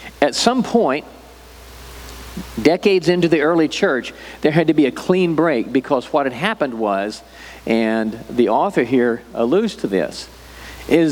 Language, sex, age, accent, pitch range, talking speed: English, male, 50-69, American, 120-170 Hz, 150 wpm